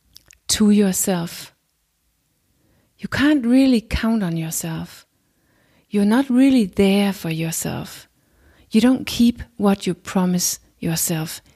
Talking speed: 110 wpm